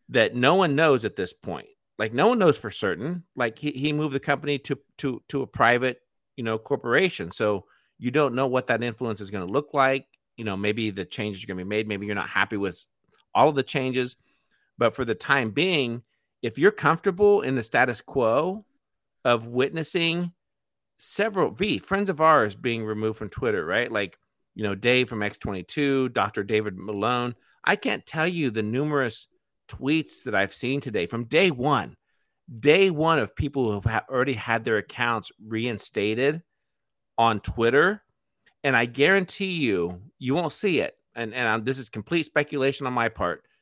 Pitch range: 110-145 Hz